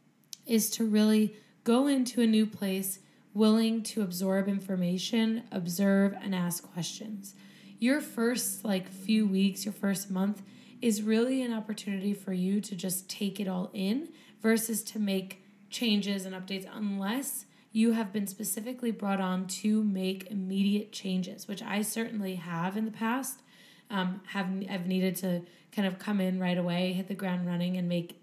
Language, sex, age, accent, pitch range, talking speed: English, female, 20-39, American, 190-225 Hz, 165 wpm